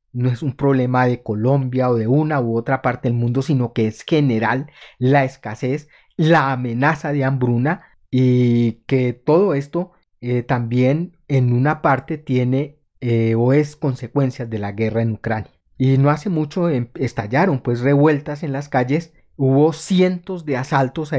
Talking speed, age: 165 wpm, 30-49